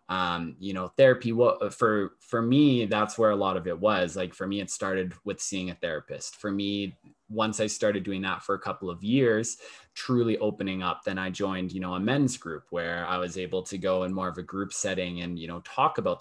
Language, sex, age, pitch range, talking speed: English, male, 20-39, 90-110 Hz, 235 wpm